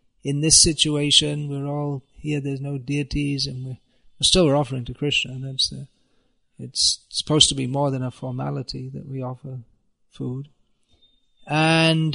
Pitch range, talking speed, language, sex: 135-155 Hz, 145 wpm, English, male